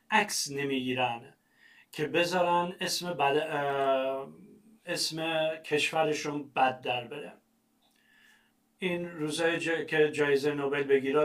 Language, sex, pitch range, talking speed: Persian, male, 135-185 Hz, 95 wpm